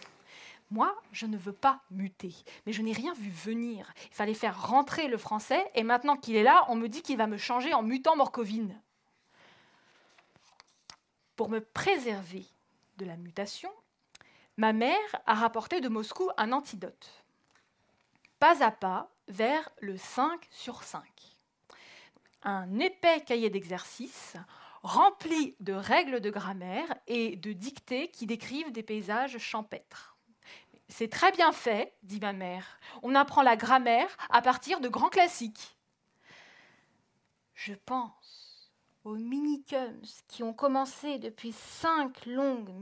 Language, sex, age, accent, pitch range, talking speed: French, female, 20-39, French, 215-280 Hz, 135 wpm